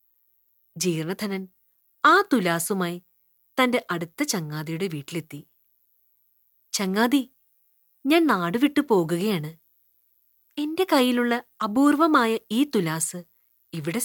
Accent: native